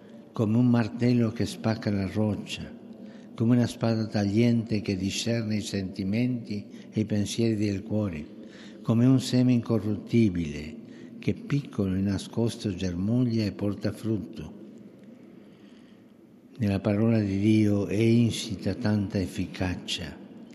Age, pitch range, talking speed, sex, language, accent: 60-79, 95-115 Hz, 115 wpm, male, English, Italian